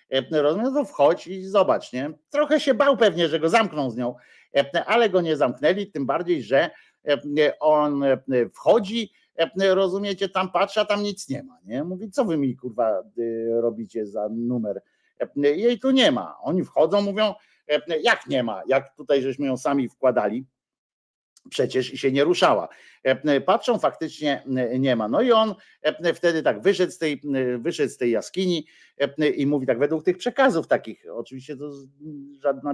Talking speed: 160 wpm